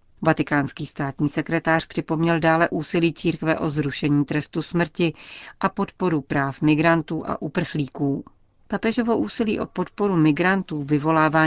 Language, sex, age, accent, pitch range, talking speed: Czech, female, 40-59, native, 145-165 Hz, 120 wpm